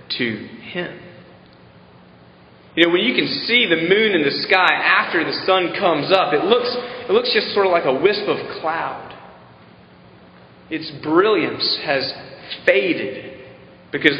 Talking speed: 145 wpm